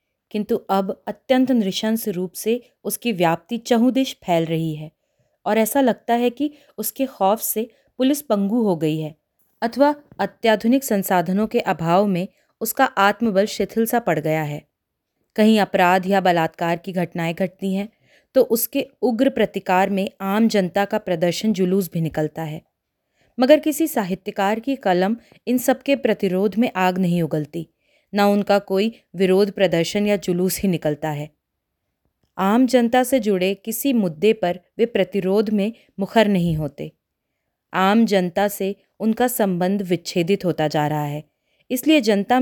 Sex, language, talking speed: female, Hindi, 150 wpm